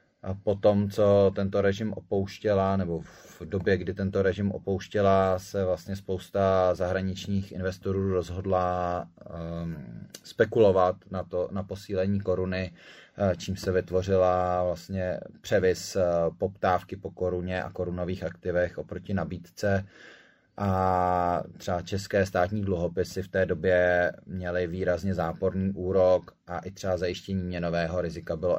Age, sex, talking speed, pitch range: 20-39, male, 115 wpm, 90-95 Hz